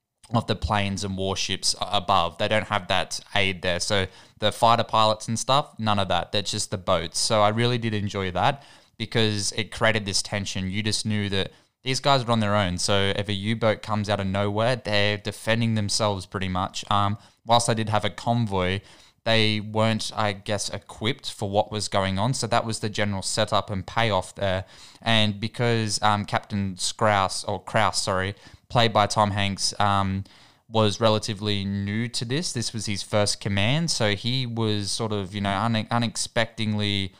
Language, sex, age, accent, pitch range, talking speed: English, male, 20-39, Australian, 100-110 Hz, 190 wpm